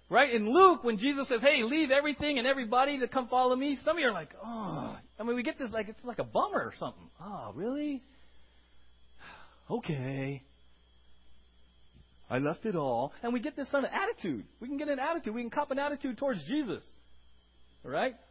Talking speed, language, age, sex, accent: 195 wpm, English, 40-59, male, American